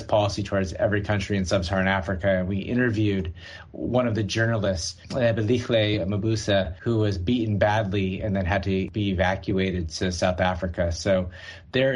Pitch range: 100-125 Hz